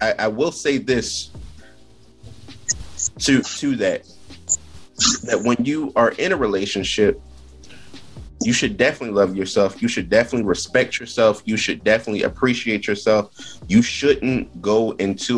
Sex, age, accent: male, 20-39, American